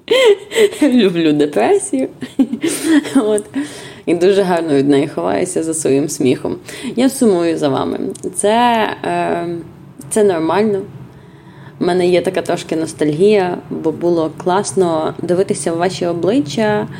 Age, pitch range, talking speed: 20-39, 160-230 Hz, 115 wpm